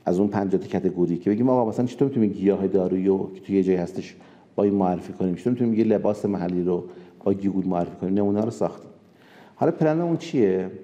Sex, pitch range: male, 95-130 Hz